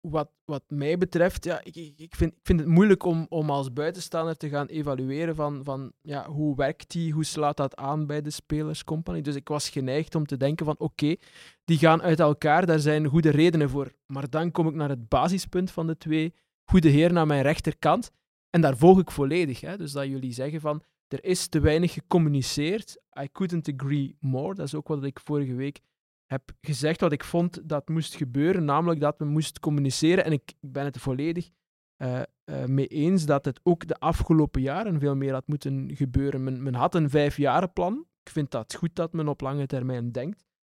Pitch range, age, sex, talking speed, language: 140-165 Hz, 20-39, male, 195 wpm, Dutch